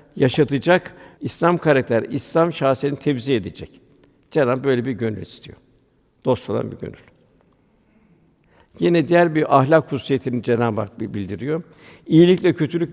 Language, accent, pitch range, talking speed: Turkish, native, 130-160 Hz, 120 wpm